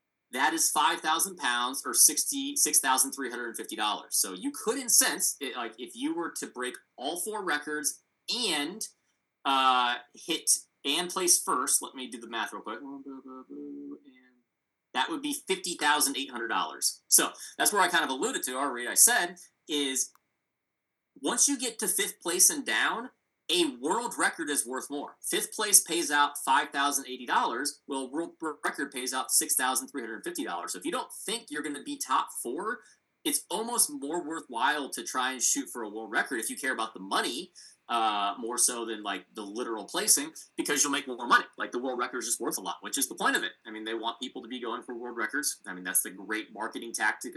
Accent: American